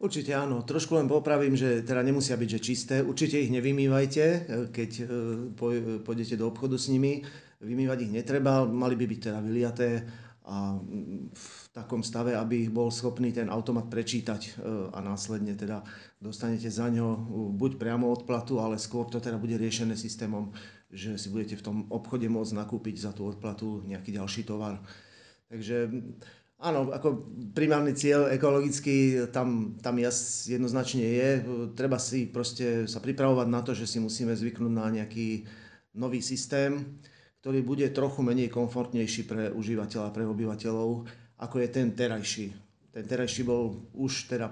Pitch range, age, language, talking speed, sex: 110-125 Hz, 40-59, Slovak, 155 wpm, male